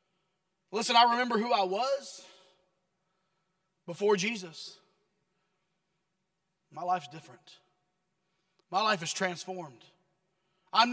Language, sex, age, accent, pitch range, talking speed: English, male, 30-49, American, 185-225 Hz, 90 wpm